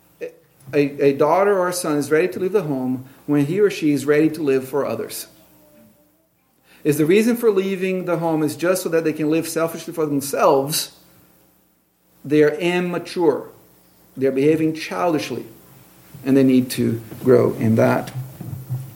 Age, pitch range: 50-69, 130-165 Hz